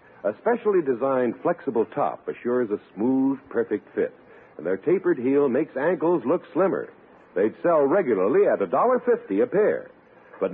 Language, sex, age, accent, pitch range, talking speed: English, male, 60-79, American, 150-250 Hz, 150 wpm